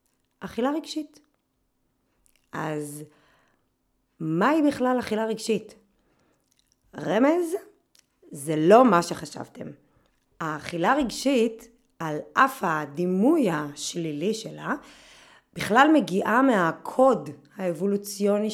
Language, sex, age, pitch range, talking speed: Hebrew, female, 20-39, 165-235 Hz, 75 wpm